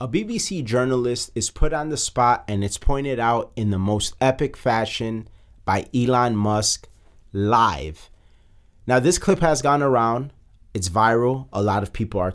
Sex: male